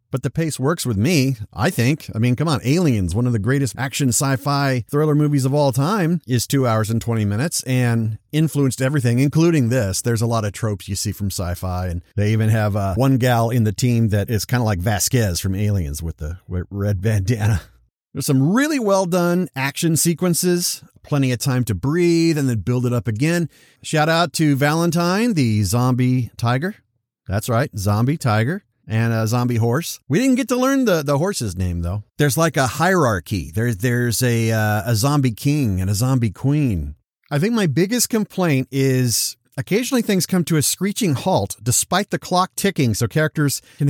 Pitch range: 115-170 Hz